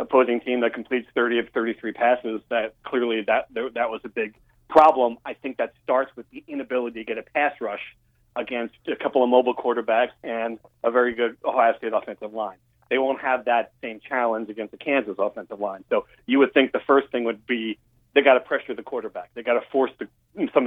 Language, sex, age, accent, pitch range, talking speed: English, male, 40-59, American, 120-135 Hz, 210 wpm